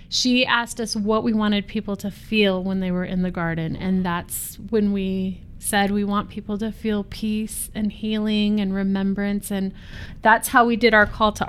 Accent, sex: American, female